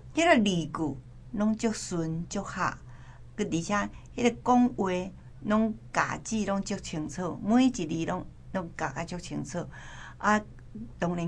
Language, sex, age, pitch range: Chinese, female, 60-79, 150-210 Hz